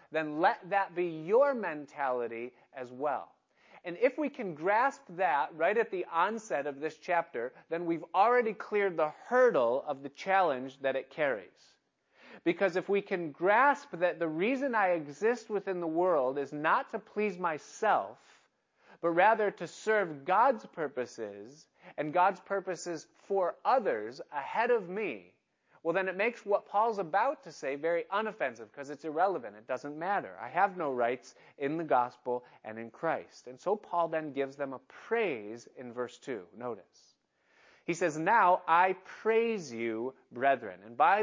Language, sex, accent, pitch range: English, male, American, 140-200 Hz